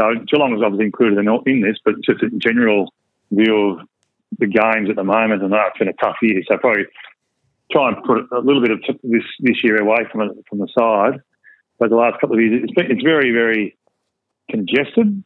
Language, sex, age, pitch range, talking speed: English, male, 40-59, 105-120 Hz, 230 wpm